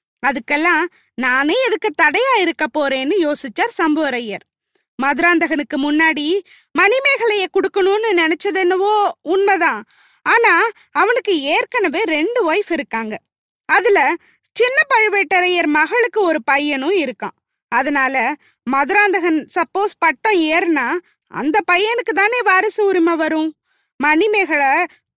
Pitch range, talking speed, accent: 310-410 Hz, 90 wpm, native